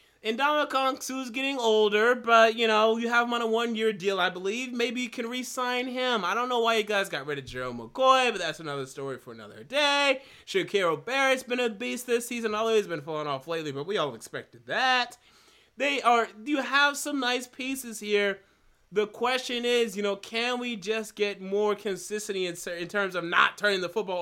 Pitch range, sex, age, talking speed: 175-240 Hz, male, 30-49, 210 wpm